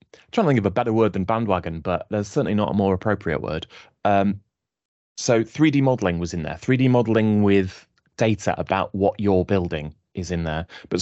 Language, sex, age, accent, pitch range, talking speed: English, male, 20-39, British, 90-110 Hz, 195 wpm